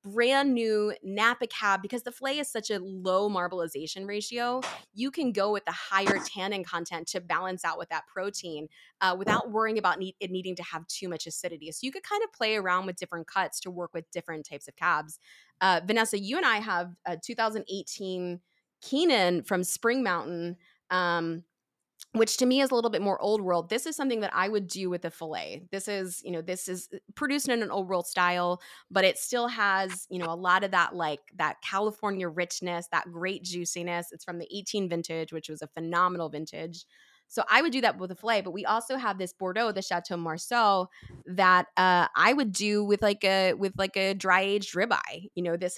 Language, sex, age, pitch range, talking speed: English, female, 20-39, 175-215 Hz, 210 wpm